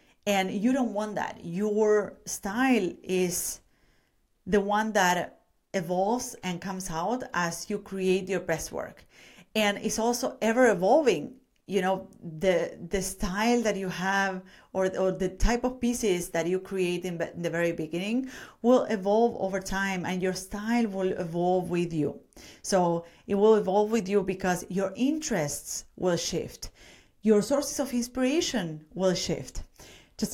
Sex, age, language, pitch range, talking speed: female, 30-49, English, 180-210 Hz, 150 wpm